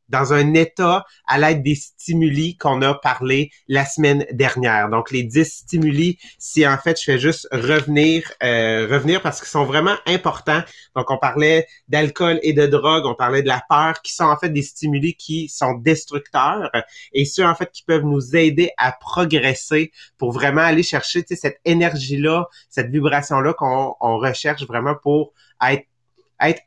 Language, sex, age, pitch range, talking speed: English, male, 30-49, 135-160 Hz, 175 wpm